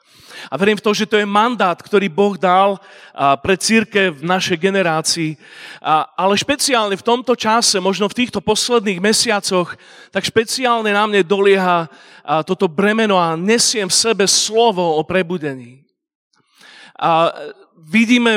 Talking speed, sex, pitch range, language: 130 wpm, male, 175-215 Hz, Slovak